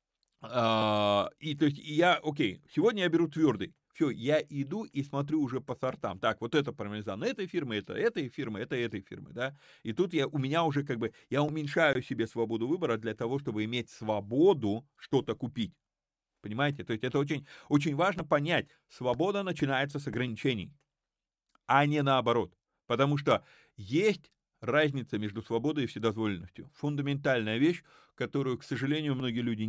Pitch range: 115-145 Hz